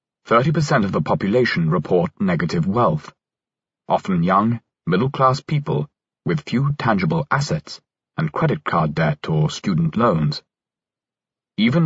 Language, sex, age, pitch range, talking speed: English, male, 30-49, 130-175 Hz, 125 wpm